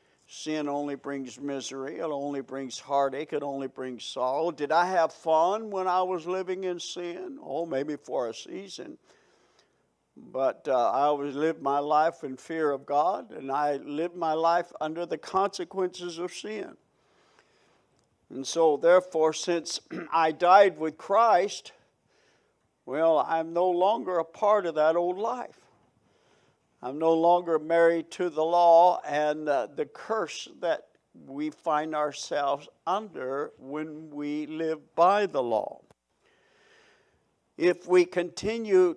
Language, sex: English, male